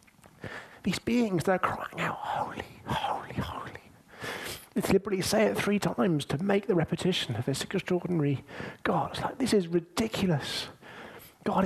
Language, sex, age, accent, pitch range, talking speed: English, male, 30-49, British, 125-185 Hz, 145 wpm